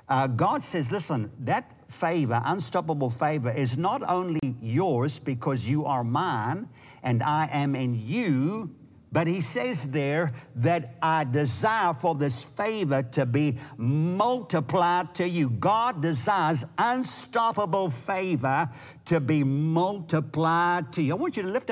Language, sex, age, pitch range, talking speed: English, male, 60-79, 140-180 Hz, 140 wpm